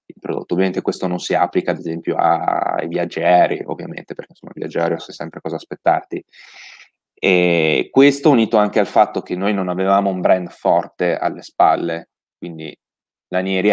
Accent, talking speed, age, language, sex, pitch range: native, 160 wpm, 20-39, Italian, male, 90-105 Hz